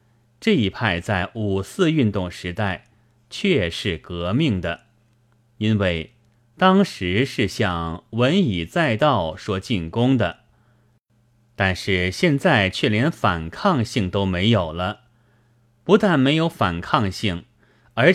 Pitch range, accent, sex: 95-125 Hz, native, male